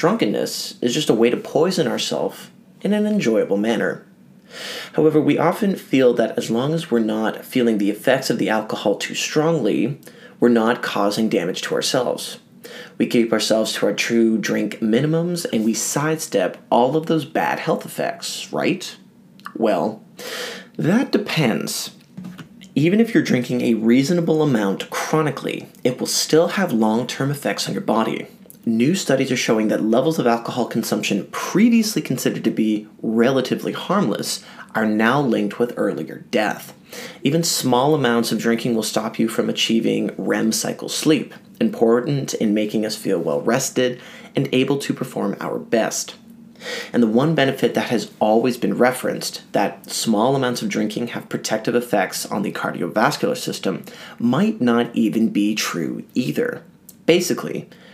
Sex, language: male, English